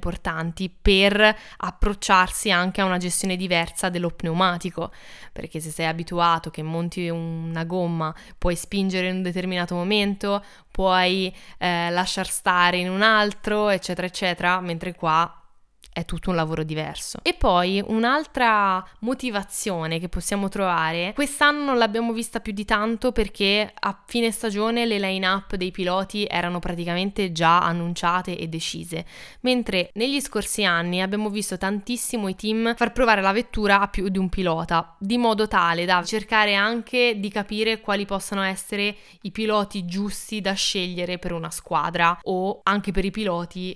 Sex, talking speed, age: female, 150 wpm, 20-39